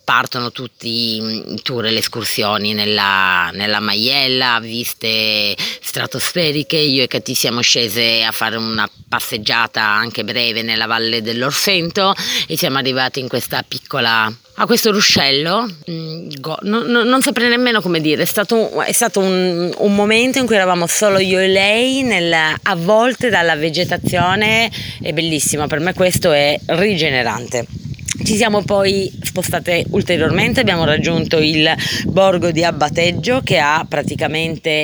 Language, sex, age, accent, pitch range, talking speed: Italian, female, 30-49, native, 125-190 Hz, 140 wpm